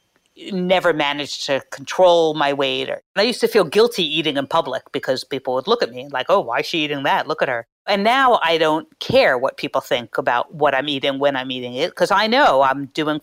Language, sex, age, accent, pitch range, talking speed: English, female, 50-69, American, 155-245 Hz, 240 wpm